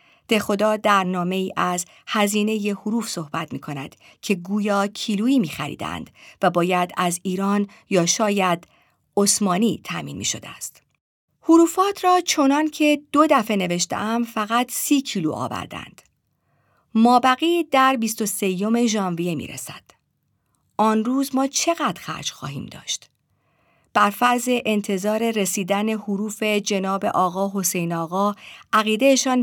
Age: 50-69